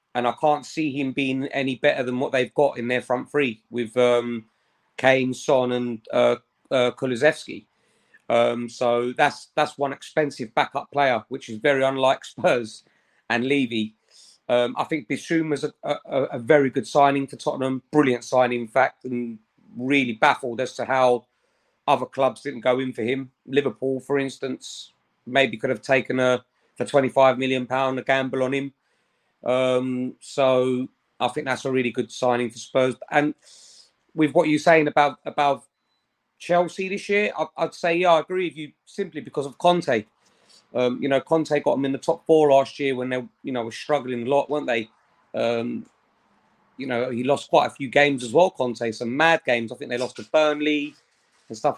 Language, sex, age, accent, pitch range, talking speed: English, male, 30-49, British, 125-145 Hz, 185 wpm